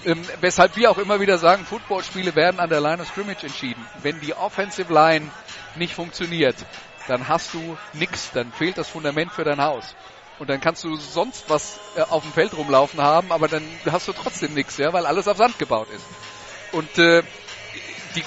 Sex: male